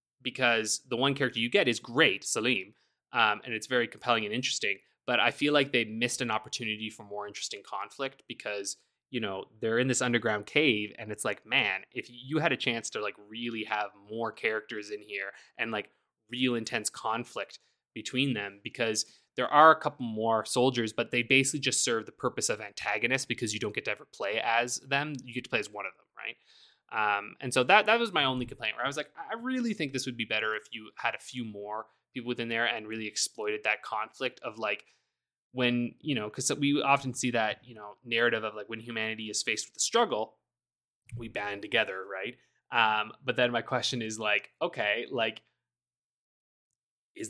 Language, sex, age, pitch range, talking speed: English, male, 20-39, 110-135 Hz, 205 wpm